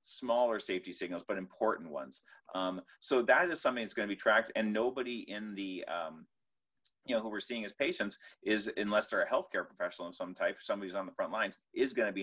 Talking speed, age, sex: 230 wpm, 30-49, male